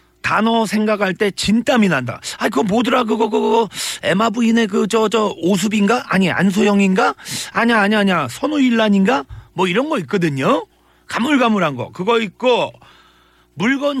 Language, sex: Korean, male